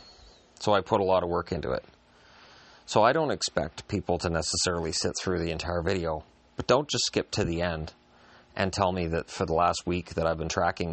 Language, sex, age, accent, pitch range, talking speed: English, male, 40-59, American, 80-95 Hz, 220 wpm